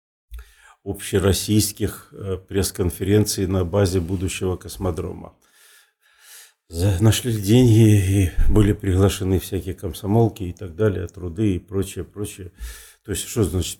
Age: 50-69